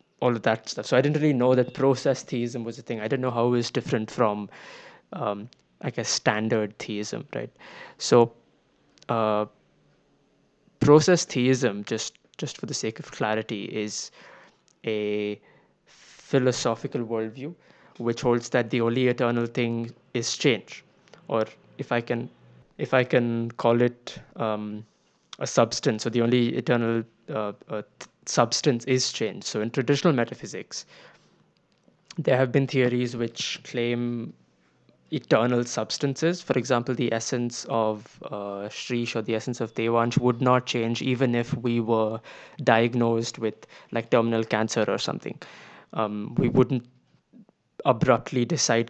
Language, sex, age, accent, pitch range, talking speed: English, male, 20-39, Indian, 110-125 Hz, 145 wpm